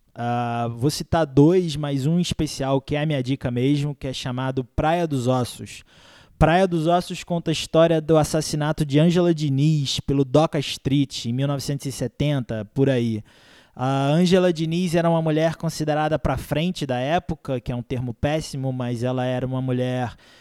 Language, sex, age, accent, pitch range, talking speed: Portuguese, male, 20-39, Brazilian, 135-160 Hz, 175 wpm